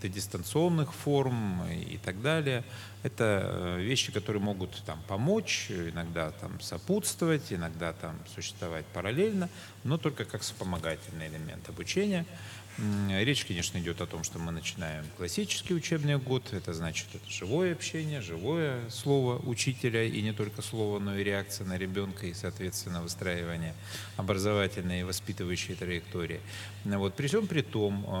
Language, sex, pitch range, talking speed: Russian, male, 90-115 Hz, 135 wpm